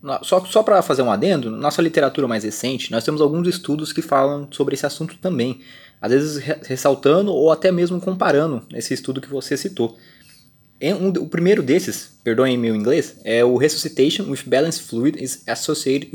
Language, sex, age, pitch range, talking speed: Portuguese, male, 20-39, 120-155 Hz, 175 wpm